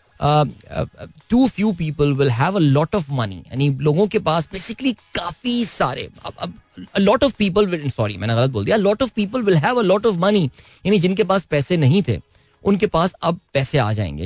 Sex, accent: male, native